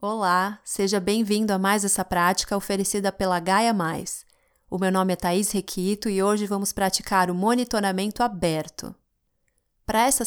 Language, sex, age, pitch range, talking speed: Portuguese, female, 20-39, 180-205 Hz, 150 wpm